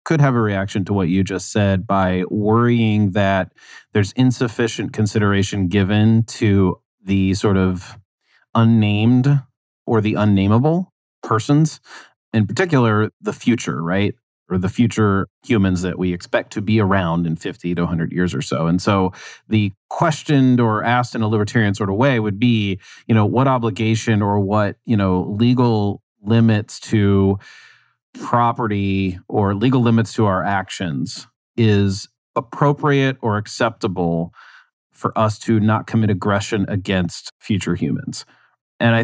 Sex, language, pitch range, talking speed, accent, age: male, English, 95-115 Hz, 145 wpm, American, 30-49